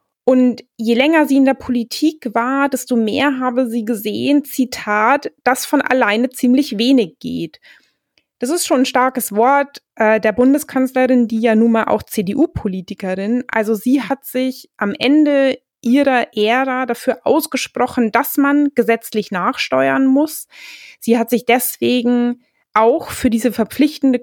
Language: German